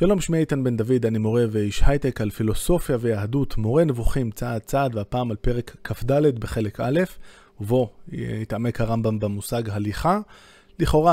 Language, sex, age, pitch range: Hebrew, male, 20-39, 110-140 Hz